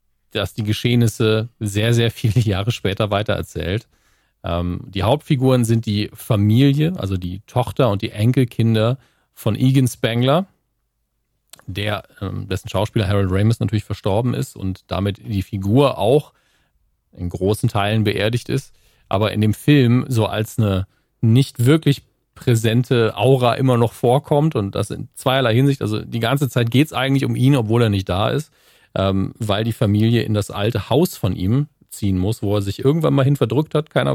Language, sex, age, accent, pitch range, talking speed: German, male, 40-59, German, 100-125 Hz, 170 wpm